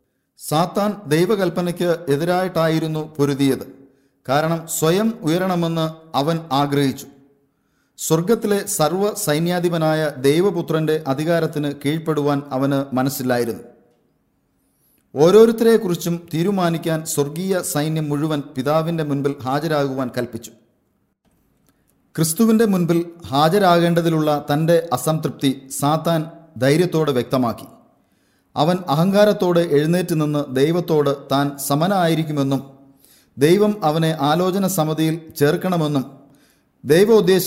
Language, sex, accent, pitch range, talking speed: English, male, Indian, 140-170 Hz, 85 wpm